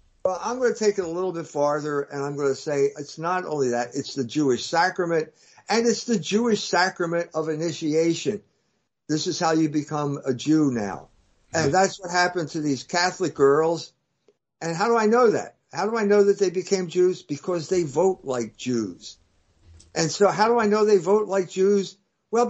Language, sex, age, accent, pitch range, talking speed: English, male, 60-79, American, 140-200 Hz, 205 wpm